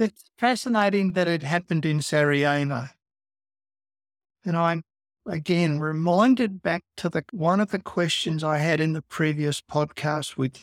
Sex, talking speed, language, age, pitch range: male, 140 wpm, English, 60-79, 140-180 Hz